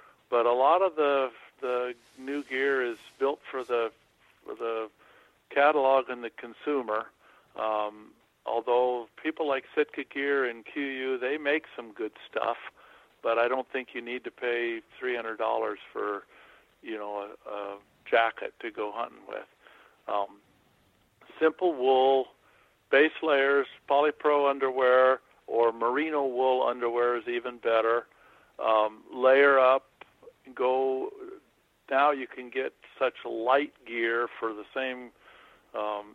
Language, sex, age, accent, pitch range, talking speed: English, male, 50-69, American, 115-140 Hz, 130 wpm